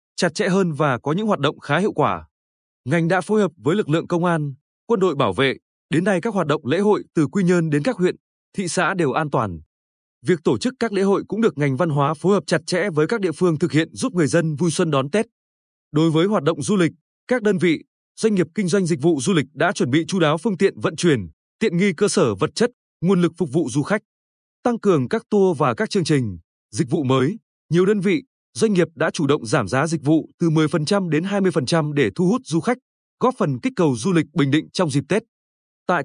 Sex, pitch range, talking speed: male, 150-195 Hz, 255 wpm